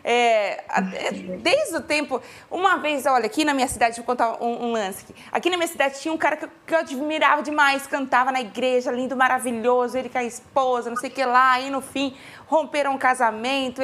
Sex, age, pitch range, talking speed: female, 20-39, 235-300 Hz, 215 wpm